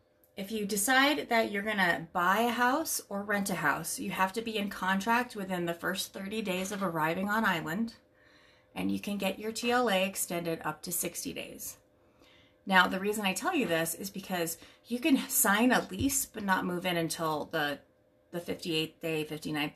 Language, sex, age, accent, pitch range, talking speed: English, female, 30-49, American, 160-225 Hz, 190 wpm